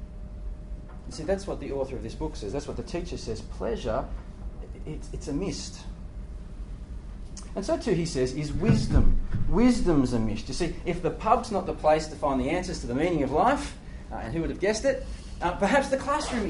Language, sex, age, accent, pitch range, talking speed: English, male, 30-49, Australian, 100-170 Hz, 205 wpm